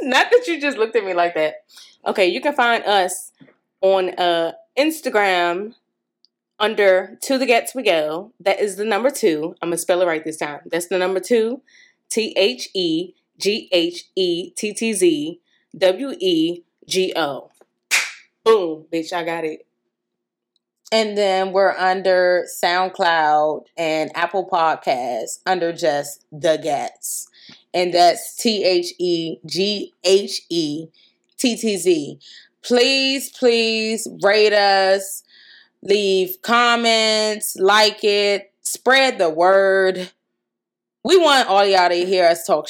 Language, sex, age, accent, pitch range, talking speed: English, female, 20-39, American, 175-235 Hz, 110 wpm